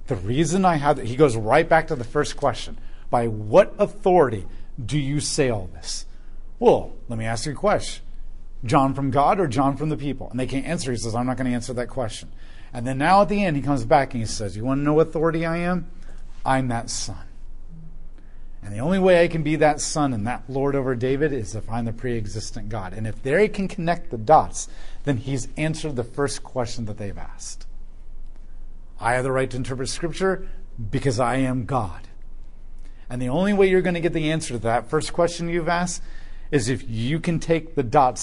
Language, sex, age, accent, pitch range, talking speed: English, male, 40-59, American, 110-155 Hz, 225 wpm